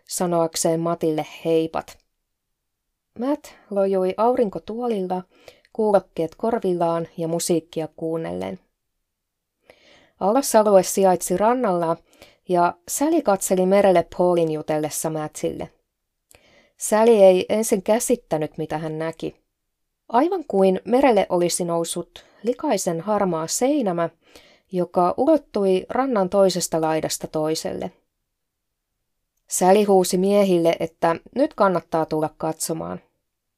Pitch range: 160-210 Hz